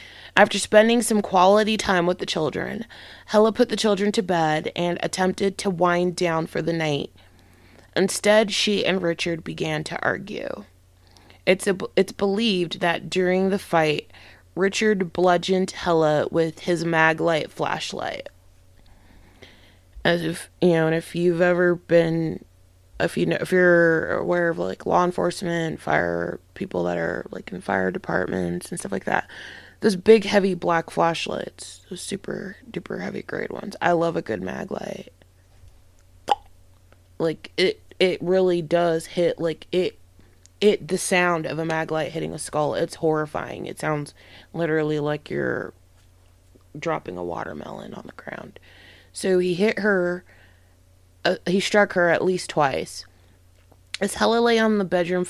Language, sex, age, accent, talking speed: English, female, 20-39, American, 150 wpm